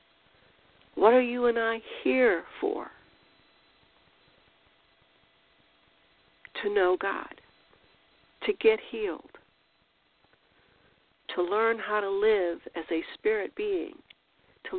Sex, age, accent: female, 60-79, American